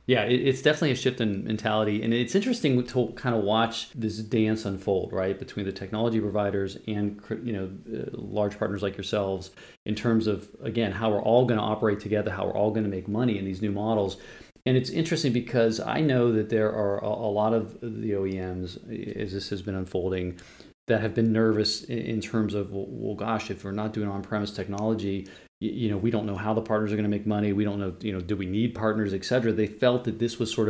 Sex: male